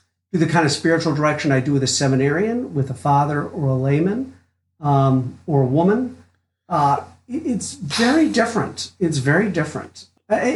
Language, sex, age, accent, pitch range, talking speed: English, male, 50-69, American, 130-185 Hz, 160 wpm